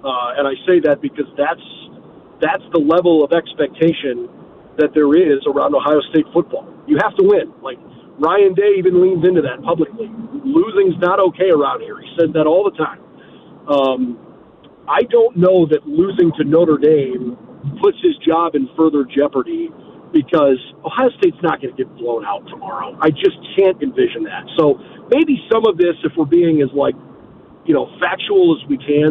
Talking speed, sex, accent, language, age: 180 wpm, male, American, English, 40-59